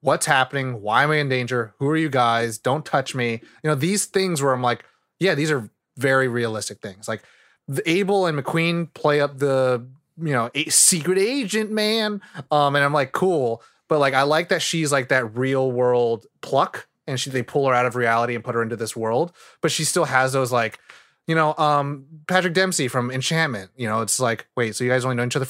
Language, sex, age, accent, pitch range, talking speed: English, male, 20-39, American, 115-155 Hz, 220 wpm